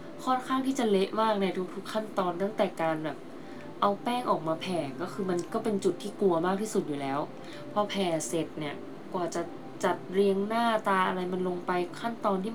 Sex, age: female, 20-39